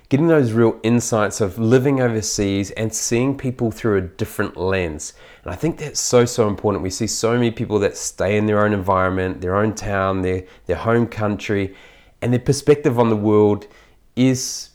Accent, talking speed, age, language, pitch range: Australian, 185 wpm, 30-49, English, 100-120 Hz